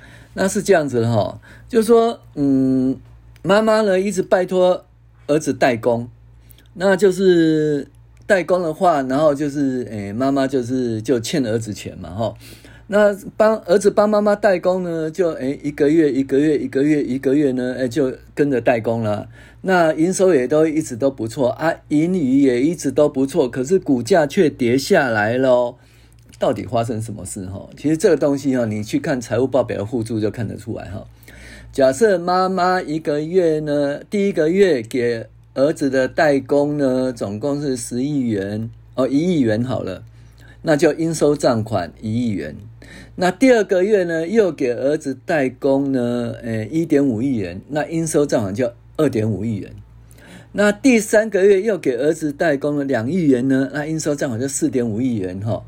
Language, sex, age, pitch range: Chinese, male, 50-69, 115-160 Hz